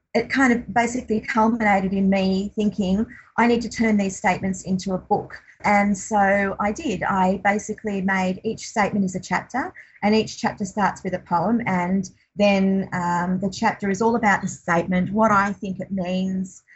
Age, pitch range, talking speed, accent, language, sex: 30-49, 190-215 Hz, 185 wpm, Australian, English, female